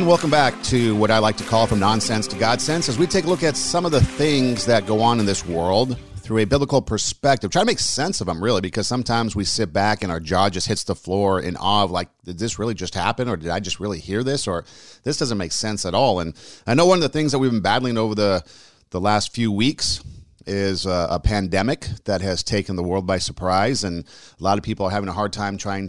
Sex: male